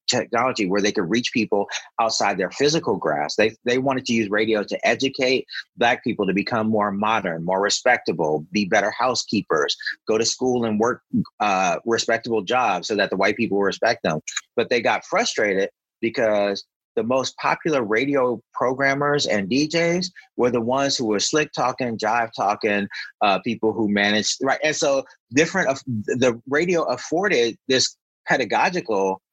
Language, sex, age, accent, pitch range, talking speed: English, male, 30-49, American, 105-140 Hz, 160 wpm